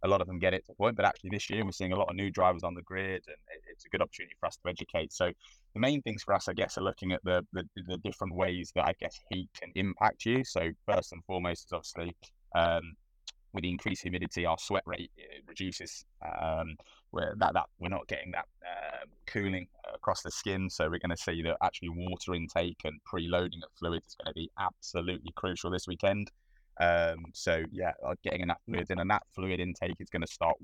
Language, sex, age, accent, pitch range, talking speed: English, male, 20-39, British, 85-95 Hz, 235 wpm